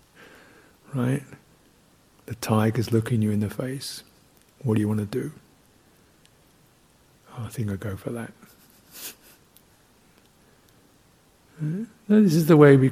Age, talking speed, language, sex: 60-79, 120 wpm, English, male